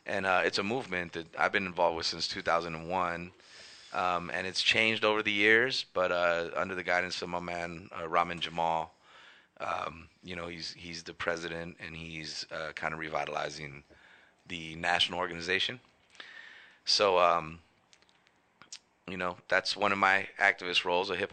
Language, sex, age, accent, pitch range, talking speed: English, male, 30-49, American, 80-90 Hz, 165 wpm